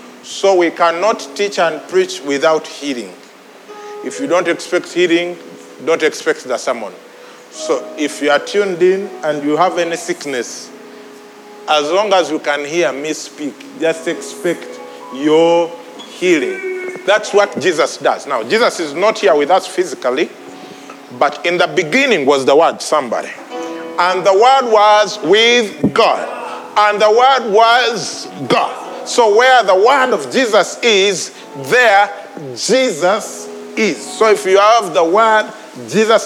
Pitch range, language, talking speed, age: 150-210 Hz, English, 145 wpm, 40-59